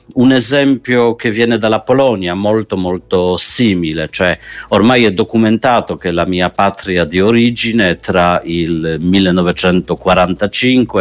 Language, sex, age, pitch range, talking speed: Italian, male, 50-69, 90-120 Hz, 120 wpm